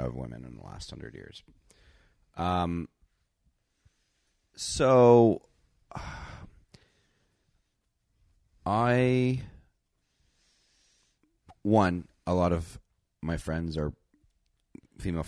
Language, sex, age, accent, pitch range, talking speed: English, male, 40-59, American, 65-85 Hz, 75 wpm